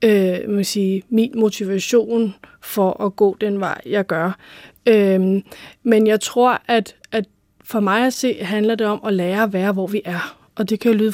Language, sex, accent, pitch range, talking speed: Danish, female, native, 205-235 Hz, 195 wpm